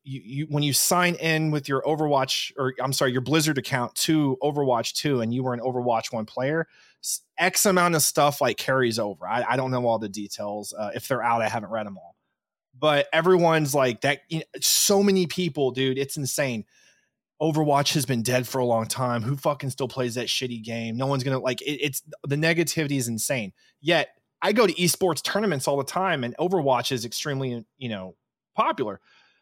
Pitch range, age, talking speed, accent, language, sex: 130-170 Hz, 20-39, 205 wpm, American, English, male